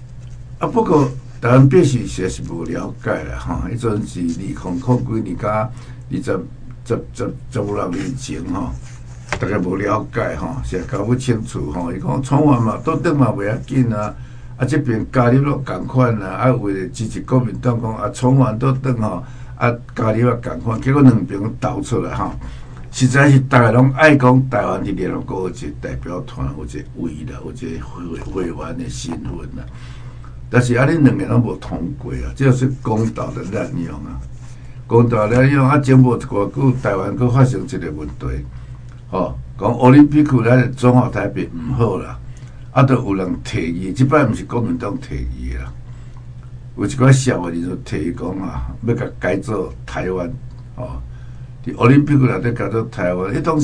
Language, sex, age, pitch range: Chinese, male, 60-79, 110-130 Hz